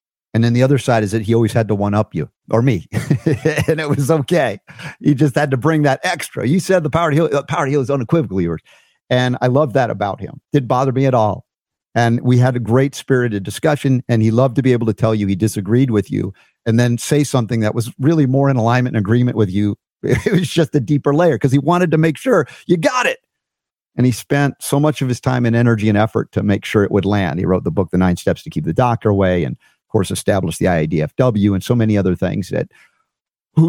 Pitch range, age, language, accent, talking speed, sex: 105-135 Hz, 50-69, English, American, 255 wpm, male